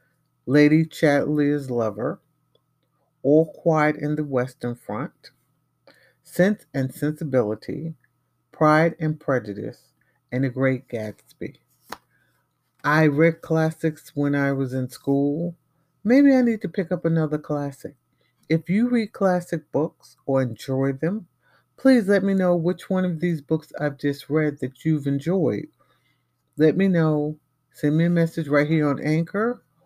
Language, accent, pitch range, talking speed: English, American, 135-170 Hz, 140 wpm